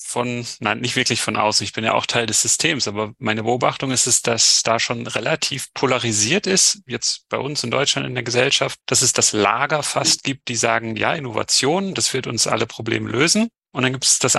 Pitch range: 115-135 Hz